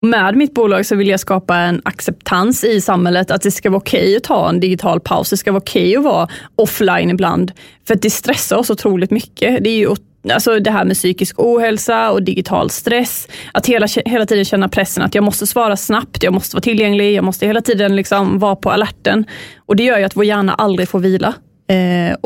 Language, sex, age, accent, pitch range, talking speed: Swedish, female, 30-49, native, 190-215 Hz, 225 wpm